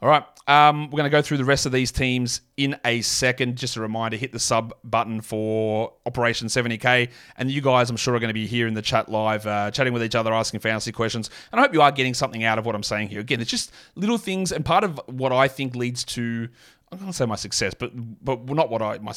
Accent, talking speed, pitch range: Australian, 270 wpm, 115-135 Hz